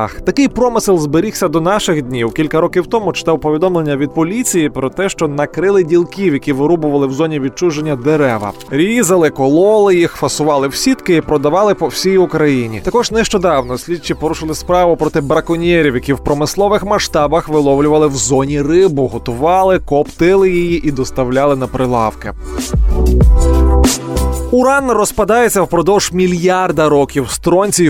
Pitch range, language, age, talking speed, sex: 140-180 Hz, Ukrainian, 20-39, 135 wpm, male